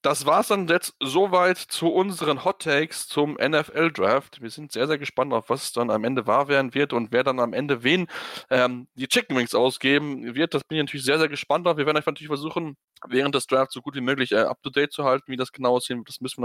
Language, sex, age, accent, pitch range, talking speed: German, male, 10-29, German, 120-140 Hz, 260 wpm